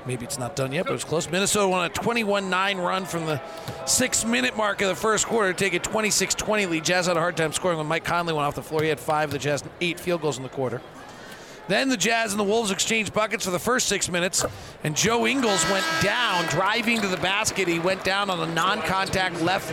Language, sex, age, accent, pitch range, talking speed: English, male, 40-59, American, 165-205 Hz, 250 wpm